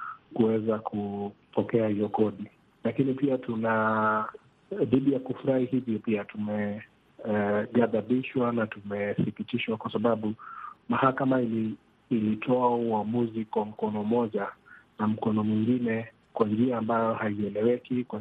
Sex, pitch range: male, 105-120 Hz